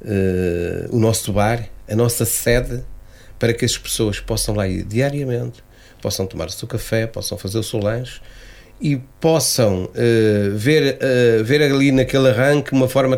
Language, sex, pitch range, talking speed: Portuguese, male, 110-145 Hz, 165 wpm